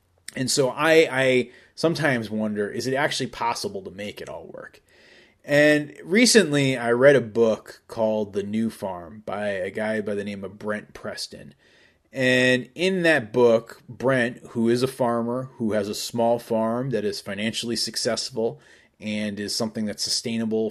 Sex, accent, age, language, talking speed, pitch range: male, American, 30-49, English, 165 wpm, 105-130 Hz